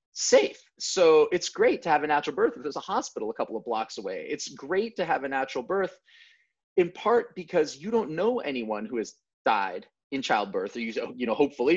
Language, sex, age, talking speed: English, male, 30-49, 210 wpm